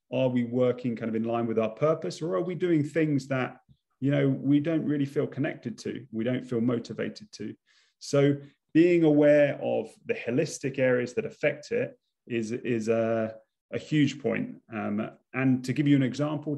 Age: 30-49